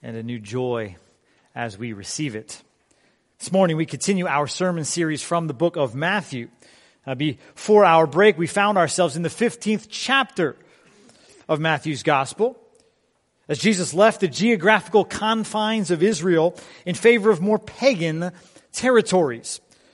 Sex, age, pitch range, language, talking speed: male, 40-59, 140-205 Hz, English, 145 wpm